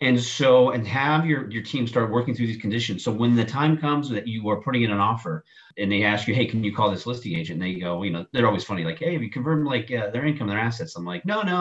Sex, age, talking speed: male, 40-59, 300 wpm